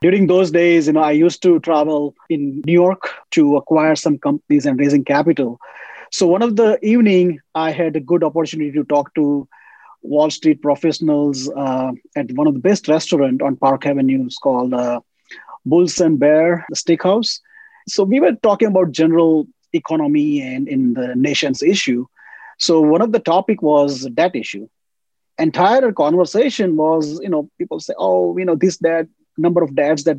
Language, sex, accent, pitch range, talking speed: English, male, Indian, 150-190 Hz, 175 wpm